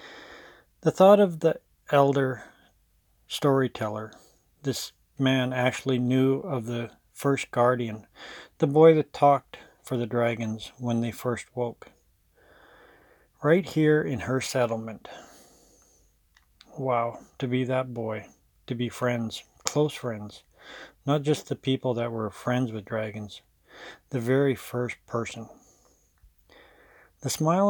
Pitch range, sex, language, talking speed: 115-140 Hz, male, English, 120 wpm